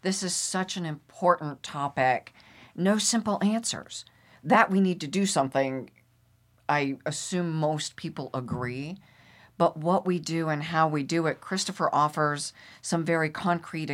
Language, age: English, 50-69